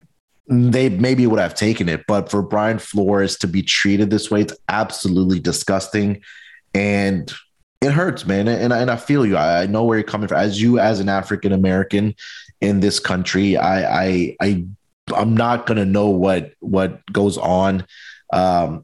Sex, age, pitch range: male, 30-49, 95-110 Hz